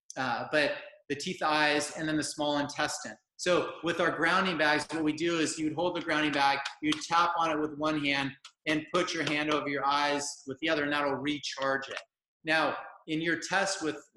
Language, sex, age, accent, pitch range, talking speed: English, male, 30-49, American, 140-170 Hz, 220 wpm